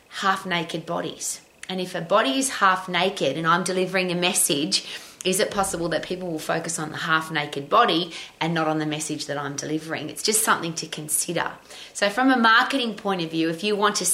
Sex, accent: female, Australian